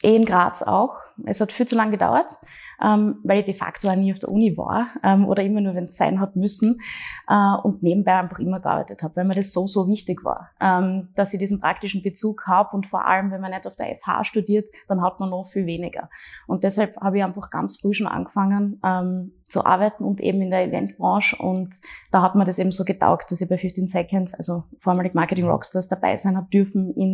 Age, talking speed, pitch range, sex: 20-39, 230 wpm, 190-210 Hz, female